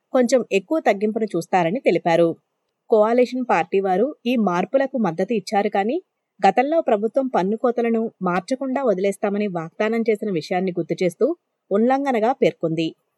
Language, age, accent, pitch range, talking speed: Telugu, 20-39, native, 195-250 Hz, 115 wpm